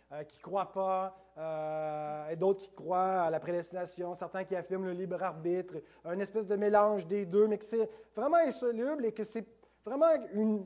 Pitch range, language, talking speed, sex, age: 175-220 Hz, French, 190 wpm, male, 30-49